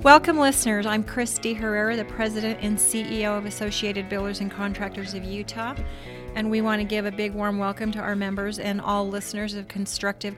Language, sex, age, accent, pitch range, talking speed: English, female, 40-59, American, 195-215 Hz, 190 wpm